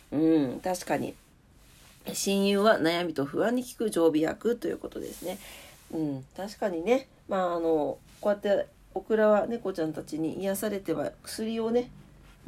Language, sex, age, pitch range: Japanese, female, 40-59, 170-250 Hz